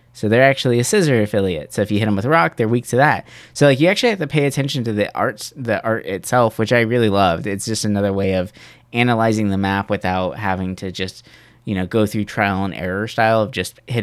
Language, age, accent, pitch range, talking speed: English, 20-39, American, 100-125 Hz, 250 wpm